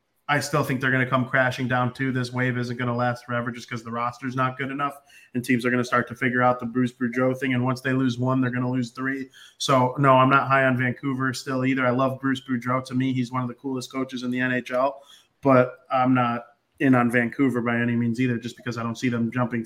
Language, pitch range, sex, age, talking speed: English, 125-145 Hz, male, 20-39, 270 wpm